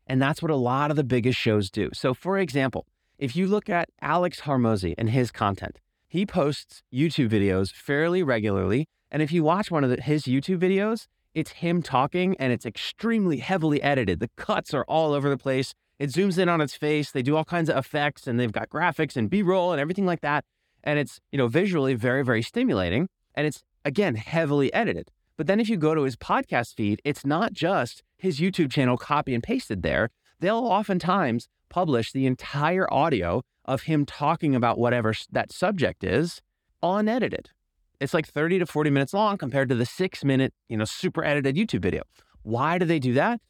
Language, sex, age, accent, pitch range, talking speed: English, male, 20-39, American, 125-170 Hz, 200 wpm